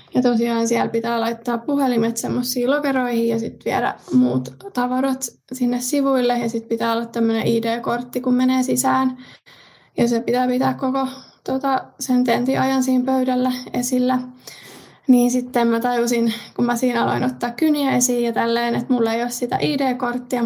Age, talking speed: 20-39, 160 wpm